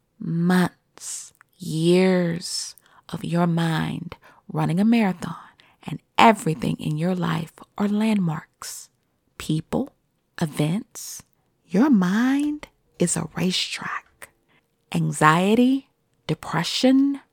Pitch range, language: 165-215 Hz, English